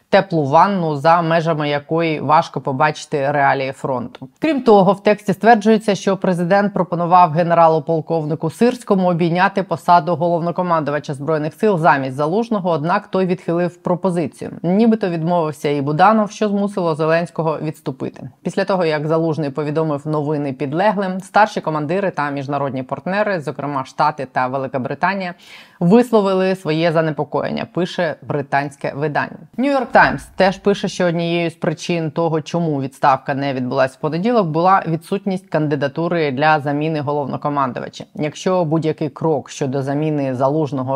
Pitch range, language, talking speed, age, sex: 145-185 Hz, Ukrainian, 130 wpm, 20-39, female